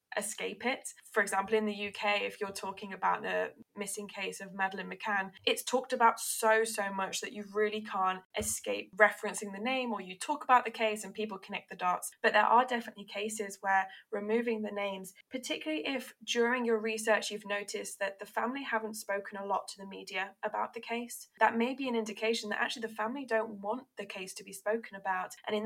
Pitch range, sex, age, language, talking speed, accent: 205-240 Hz, female, 10-29, English, 210 wpm, British